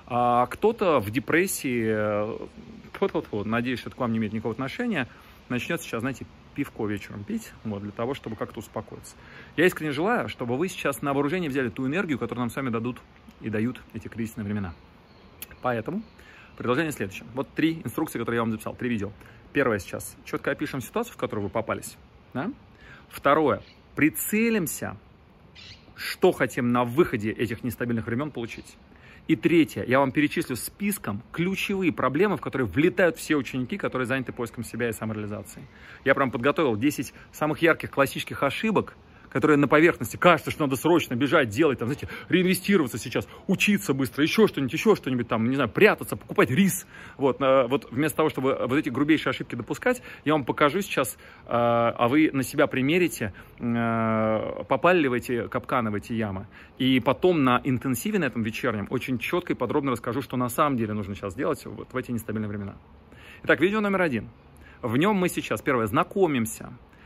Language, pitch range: Russian, 115-155 Hz